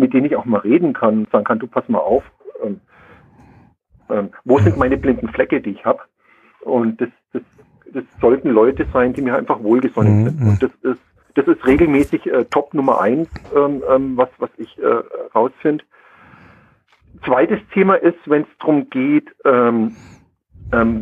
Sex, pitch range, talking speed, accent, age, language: male, 115-175 Hz, 175 wpm, German, 50-69, German